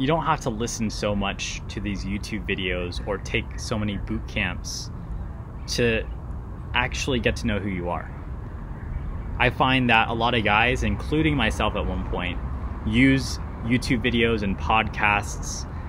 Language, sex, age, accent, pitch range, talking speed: English, male, 20-39, American, 95-115 Hz, 160 wpm